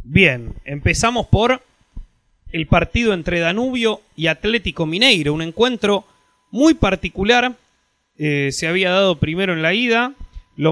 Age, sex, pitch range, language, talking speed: 20-39, male, 155-205 Hz, Spanish, 130 wpm